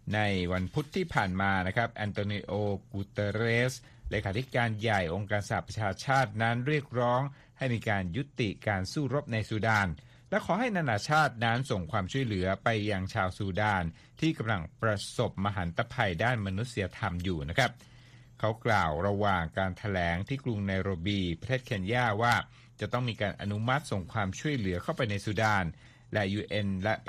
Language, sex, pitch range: Thai, male, 100-125 Hz